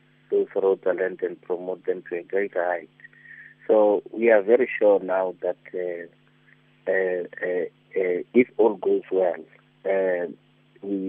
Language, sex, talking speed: English, male, 145 wpm